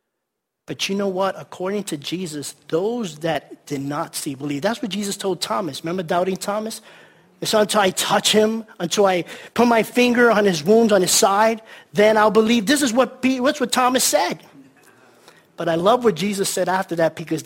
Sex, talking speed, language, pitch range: male, 190 wpm, English, 170-225 Hz